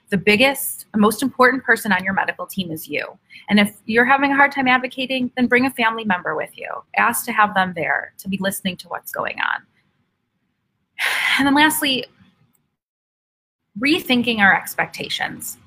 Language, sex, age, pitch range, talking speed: English, female, 30-49, 185-235 Hz, 170 wpm